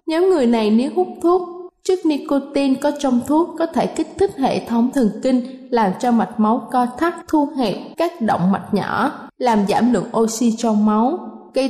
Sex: female